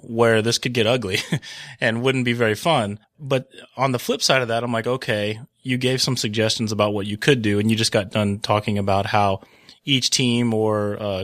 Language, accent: English, American